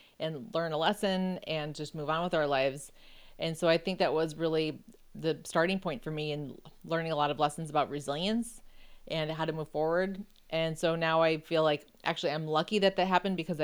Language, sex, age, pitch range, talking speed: English, female, 30-49, 155-185 Hz, 215 wpm